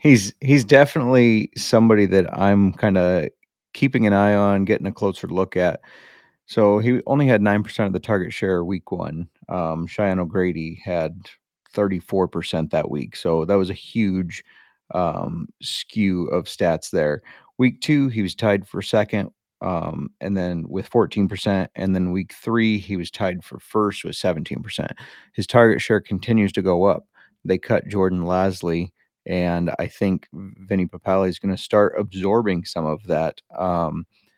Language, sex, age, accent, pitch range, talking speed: English, male, 30-49, American, 90-105 Hz, 170 wpm